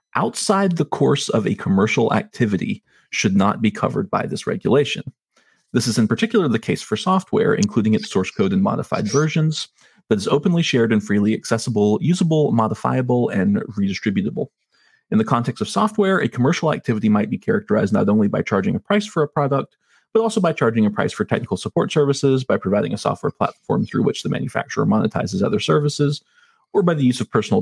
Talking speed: 190 wpm